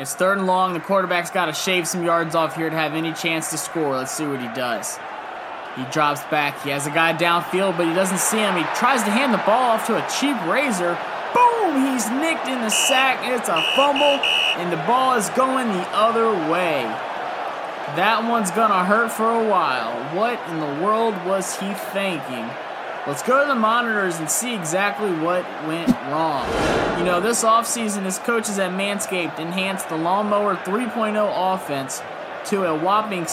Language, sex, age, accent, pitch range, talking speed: English, male, 20-39, American, 170-210 Hz, 195 wpm